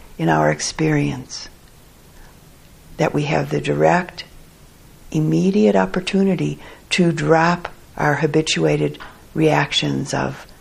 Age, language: 50-69, English